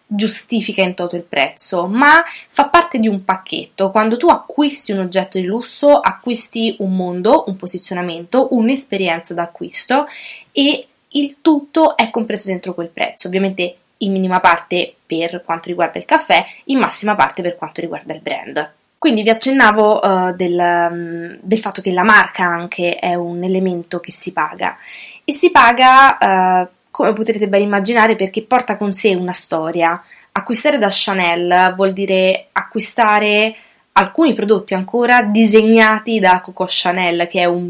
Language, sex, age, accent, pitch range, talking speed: English, female, 20-39, Italian, 185-230 Hz, 150 wpm